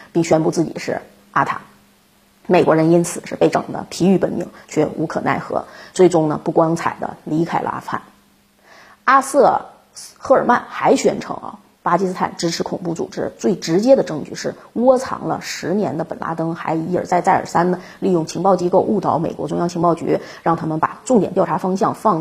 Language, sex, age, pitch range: Chinese, female, 30-49, 160-195 Hz